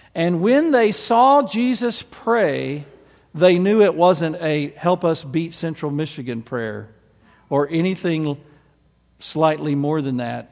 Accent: American